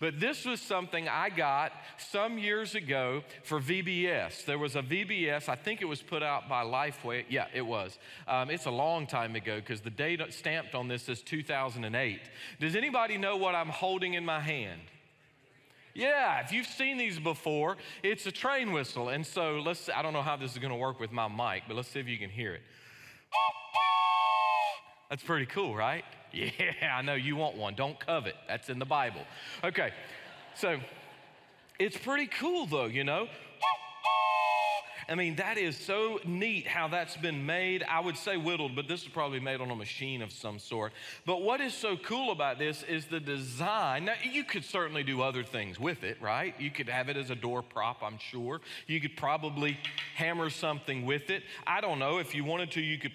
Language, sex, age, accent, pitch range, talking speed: English, male, 40-59, American, 130-175 Hz, 200 wpm